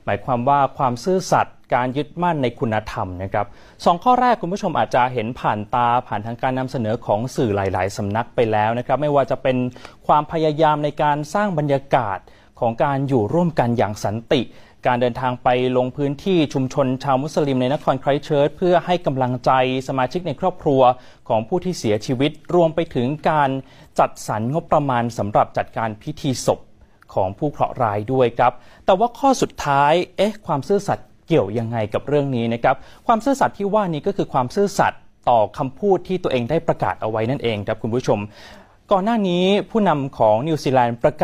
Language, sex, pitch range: Thai, male, 120-160 Hz